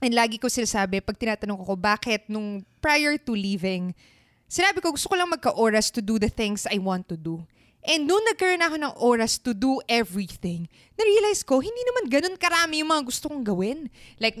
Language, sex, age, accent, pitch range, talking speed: Filipino, female, 20-39, native, 205-305 Hz, 200 wpm